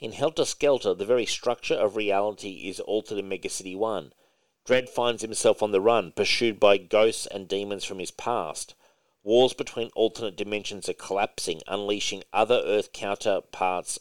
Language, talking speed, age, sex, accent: English, 160 wpm, 40-59, male, Australian